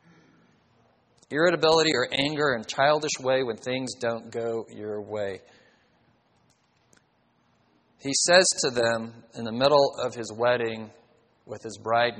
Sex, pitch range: male, 120-170 Hz